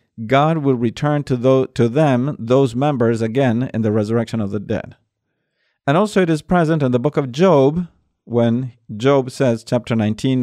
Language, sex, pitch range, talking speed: English, male, 115-160 Hz, 180 wpm